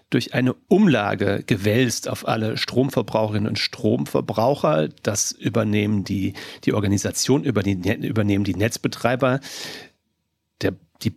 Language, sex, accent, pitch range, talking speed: German, male, German, 105-125 Hz, 100 wpm